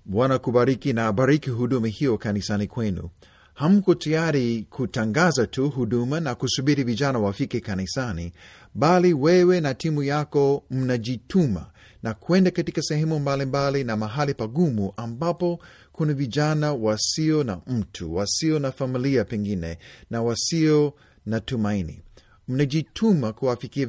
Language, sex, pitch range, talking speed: Swahili, male, 110-150 Hz, 120 wpm